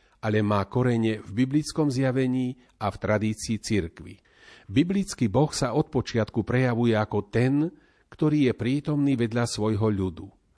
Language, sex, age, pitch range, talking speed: Slovak, male, 40-59, 105-130 Hz, 135 wpm